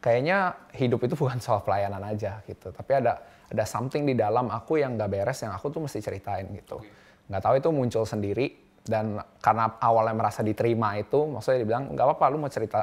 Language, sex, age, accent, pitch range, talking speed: Indonesian, male, 20-39, native, 105-125 Hz, 195 wpm